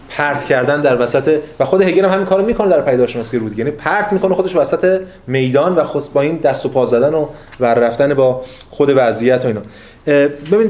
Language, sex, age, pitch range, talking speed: Persian, male, 30-49, 120-155 Hz, 210 wpm